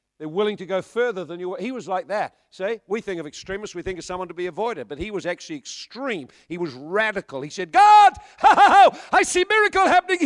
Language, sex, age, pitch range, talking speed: English, male, 50-69, 160-215 Hz, 230 wpm